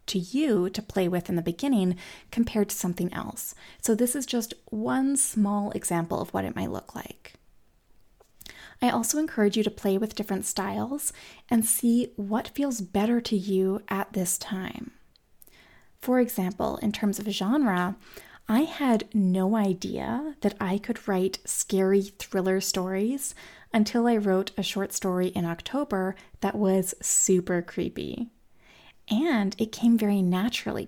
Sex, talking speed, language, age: female, 155 wpm, English, 20-39